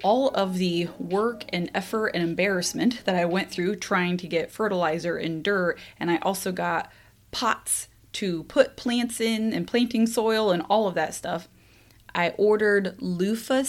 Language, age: English, 20-39